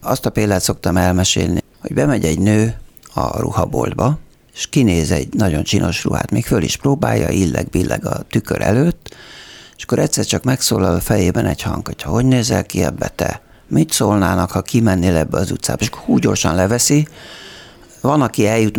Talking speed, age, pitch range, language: 175 wpm, 60-79, 95-125 Hz, Hungarian